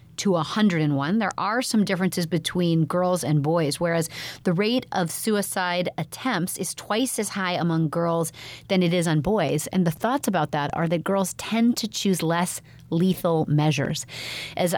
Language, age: English, 30-49